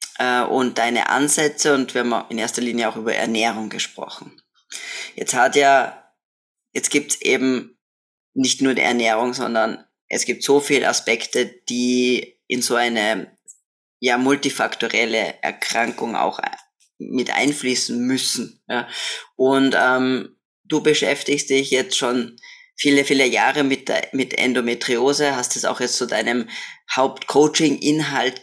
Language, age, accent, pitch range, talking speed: German, 20-39, German, 125-145 Hz, 130 wpm